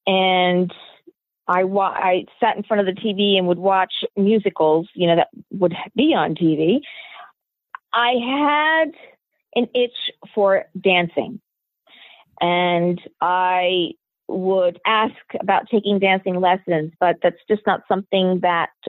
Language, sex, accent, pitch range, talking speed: English, female, American, 180-235 Hz, 130 wpm